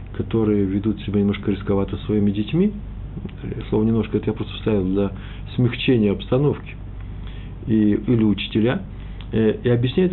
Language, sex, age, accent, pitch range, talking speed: Russian, male, 50-69, native, 100-120 Hz, 130 wpm